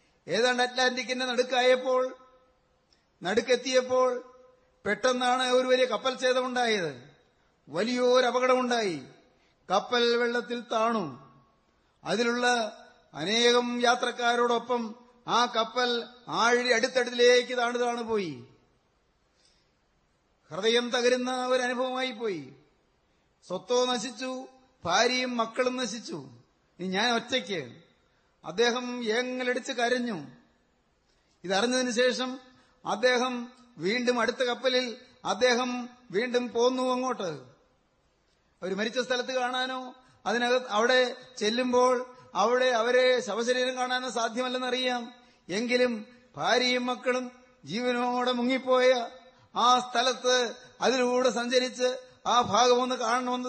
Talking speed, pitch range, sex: 80 wpm, 240-255 Hz, male